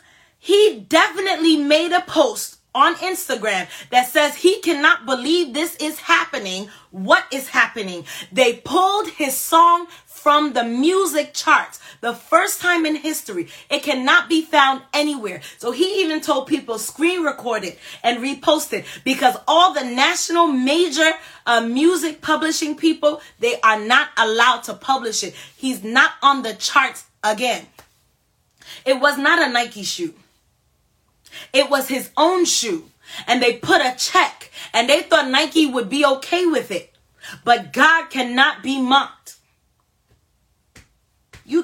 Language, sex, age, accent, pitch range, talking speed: English, female, 30-49, American, 245-320 Hz, 145 wpm